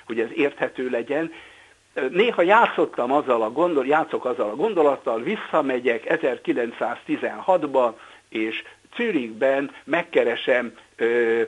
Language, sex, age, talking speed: Hungarian, male, 60-79, 100 wpm